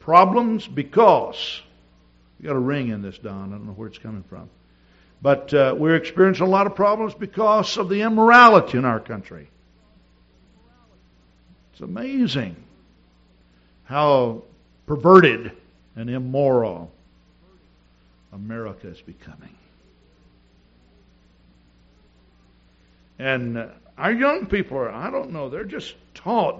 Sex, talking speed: male, 115 wpm